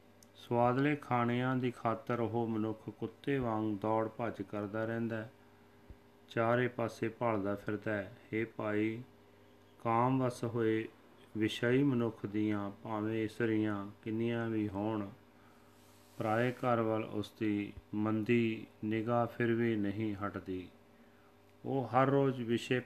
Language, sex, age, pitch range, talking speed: Punjabi, male, 30-49, 100-120 Hz, 115 wpm